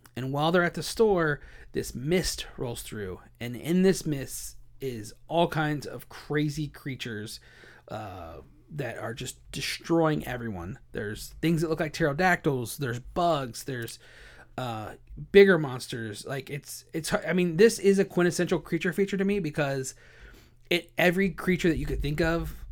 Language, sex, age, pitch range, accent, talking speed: English, male, 30-49, 120-165 Hz, American, 160 wpm